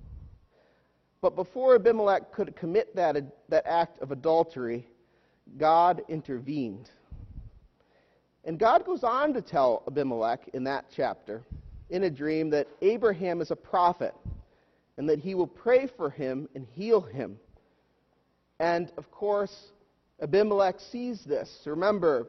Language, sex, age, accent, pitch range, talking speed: English, male, 40-59, American, 125-195 Hz, 125 wpm